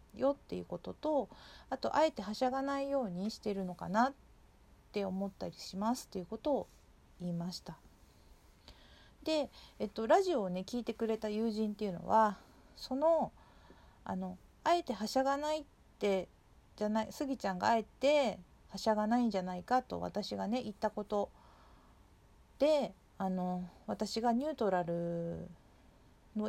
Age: 40-59